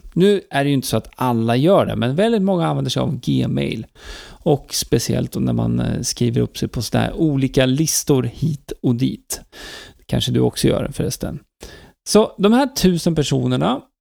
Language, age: Swedish, 40-59